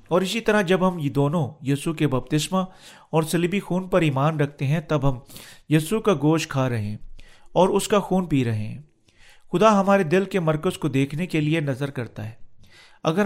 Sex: male